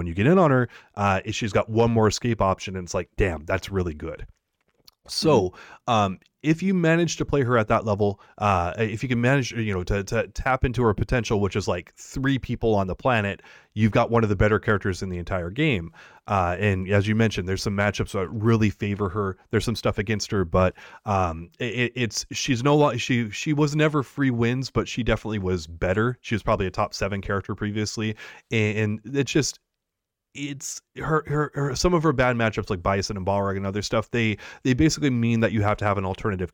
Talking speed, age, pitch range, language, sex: 225 wpm, 30-49, 100-120 Hz, English, male